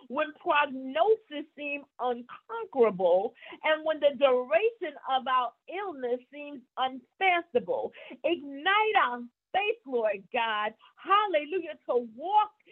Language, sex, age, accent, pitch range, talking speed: English, female, 50-69, American, 245-370 Hz, 100 wpm